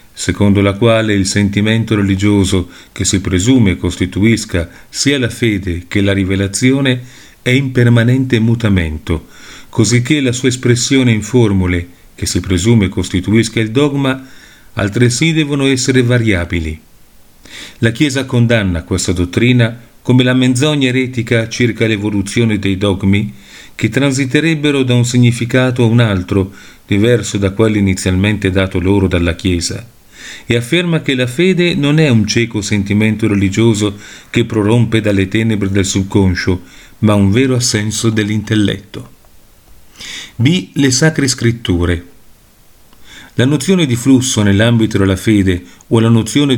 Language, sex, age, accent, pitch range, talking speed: Italian, male, 40-59, native, 100-125 Hz, 130 wpm